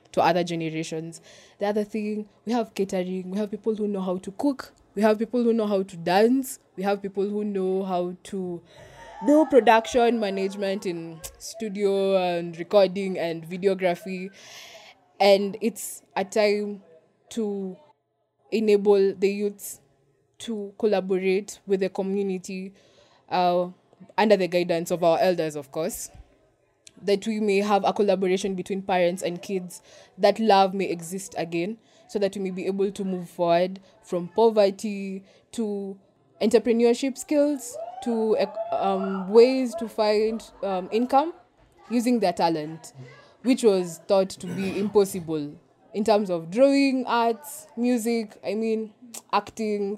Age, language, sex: 20-39, German, female